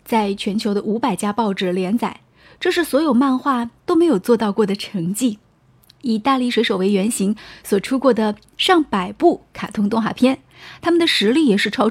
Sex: female